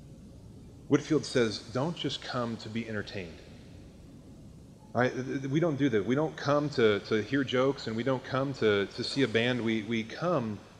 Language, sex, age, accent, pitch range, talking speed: English, male, 30-49, American, 120-155 Hz, 185 wpm